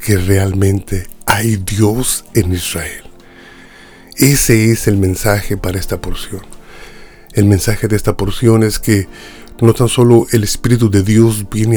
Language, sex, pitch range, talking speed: Spanish, male, 100-115 Hz, 145 wpm